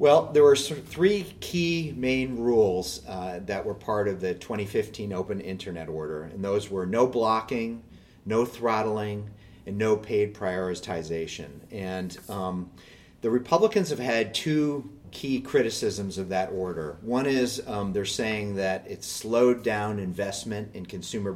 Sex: male